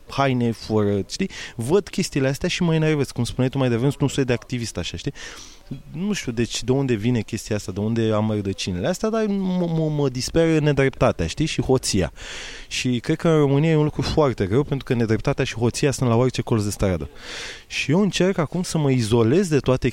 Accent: native